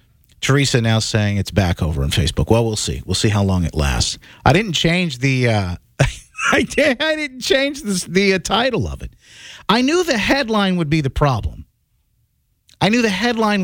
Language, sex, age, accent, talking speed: English, male, 40-59, American, 200 wpm